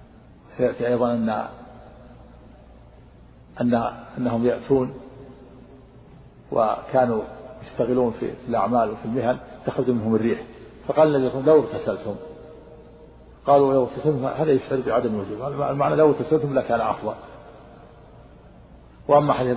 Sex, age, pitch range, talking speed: male, 50-69, 115-135 Hz, 105 wpm